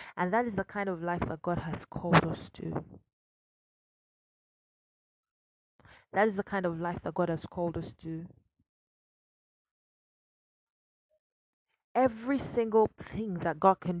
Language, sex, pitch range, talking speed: English, female, 165-210 Hz, 135 wpm